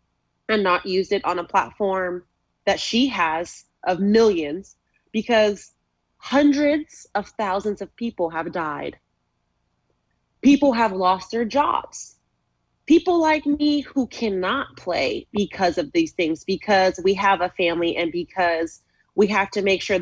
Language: English